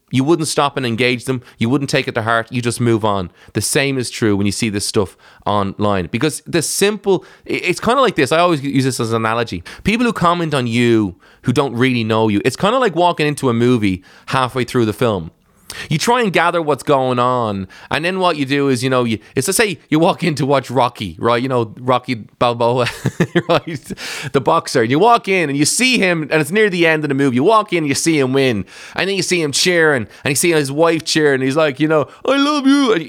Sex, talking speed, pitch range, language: male, 255 wpm, 120-170 Hz, English